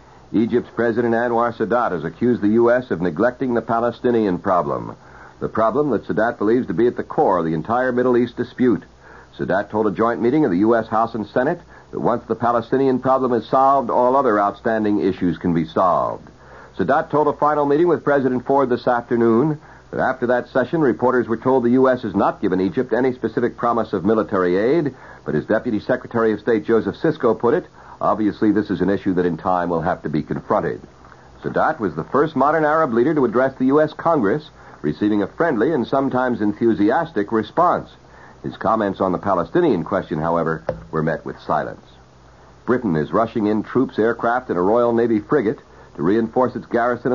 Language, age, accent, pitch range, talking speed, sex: English, 60-79, American, 100-125 Hz, 190 wpm, male